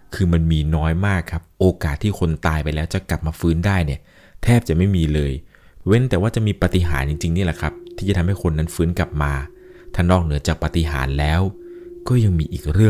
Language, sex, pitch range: Thai, male, 75-100 Hz